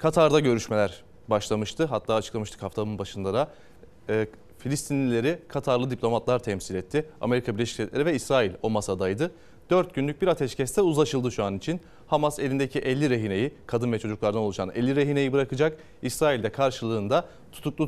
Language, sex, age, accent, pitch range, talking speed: Turkish, male, 30-49, native, 115-150 Hz, 150 wpm